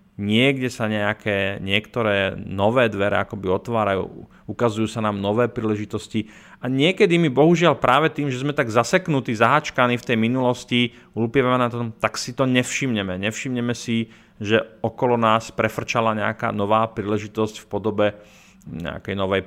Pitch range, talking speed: 105-135 Hz, 140 wpm